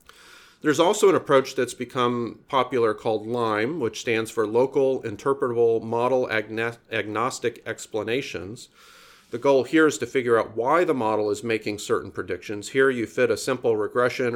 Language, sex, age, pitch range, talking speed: English, male, 40-59, 105-135 Hz, 155 wpm